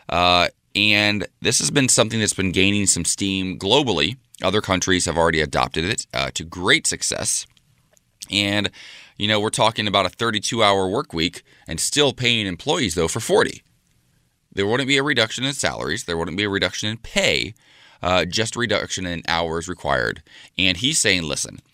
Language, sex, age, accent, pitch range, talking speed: English, male, 20-39, American, 85-110 Hz, 175 wpm